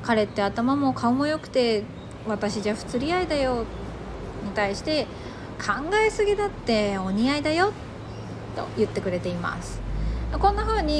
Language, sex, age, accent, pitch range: Japanese, female, 20-39, native, 215-305 Hz